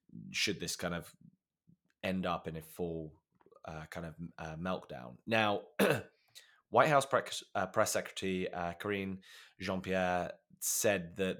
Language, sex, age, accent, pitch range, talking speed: English, male, 20-39, British, 85-105 Hz, 140 wpm